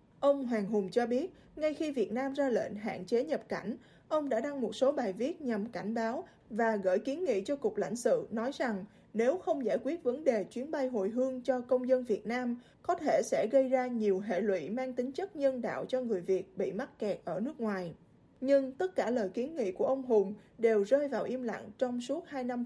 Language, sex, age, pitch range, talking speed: Vietnamese, female, 20-39, 220-275 Hz, 240 wpm